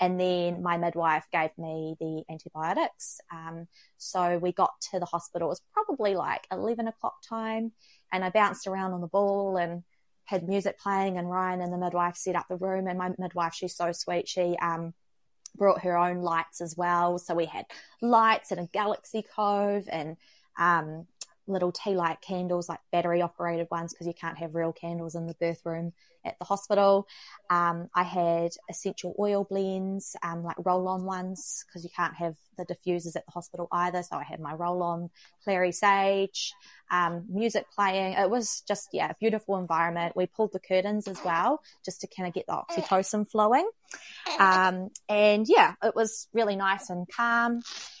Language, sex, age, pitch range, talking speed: English, female, 20-39, 170-200 Hz, 185 wpm